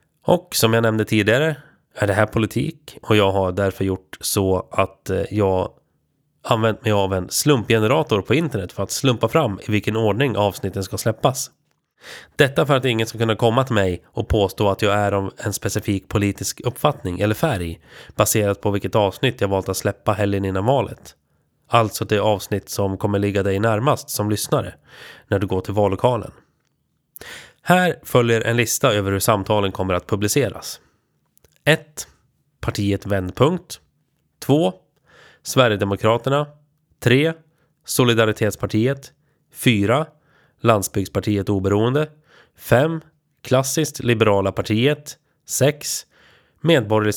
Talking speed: 135 wpm